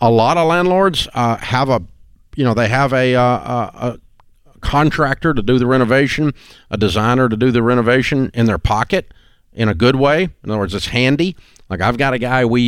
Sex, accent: male, American